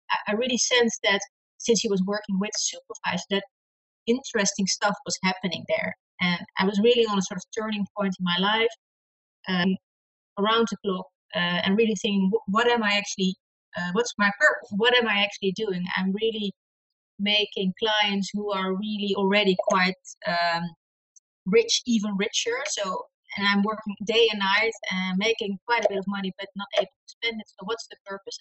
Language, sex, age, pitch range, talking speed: English, female, 30-49, 185-215 Hz, 185 wpm